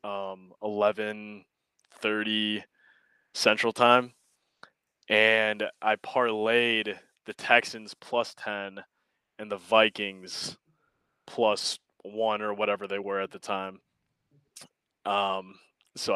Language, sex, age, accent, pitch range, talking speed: English, male, 20-39, American, 105-120 Hz, 95 wpm